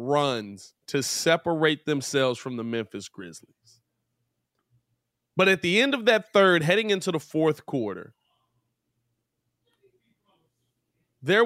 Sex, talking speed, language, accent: male, 110 wpm, English, American